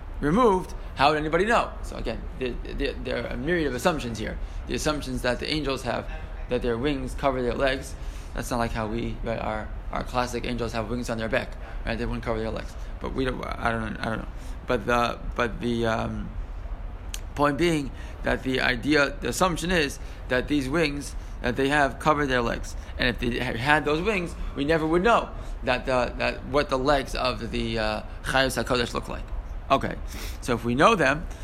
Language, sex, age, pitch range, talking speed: English, male, 20-39, 115-150 Hz, 205 wpm